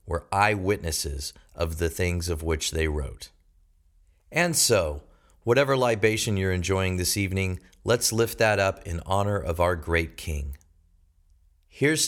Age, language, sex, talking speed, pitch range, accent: 40-59, English, male, 140 wpm, 75-110 Hz, American